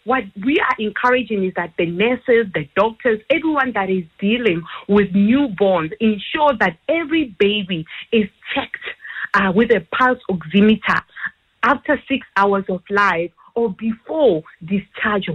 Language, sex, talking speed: English, female, 135 wpm